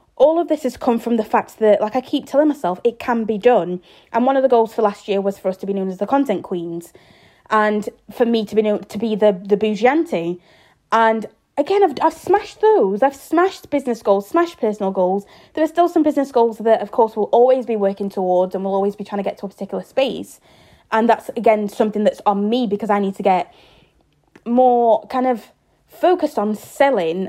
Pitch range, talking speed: 195-240 Hz, 235 wpm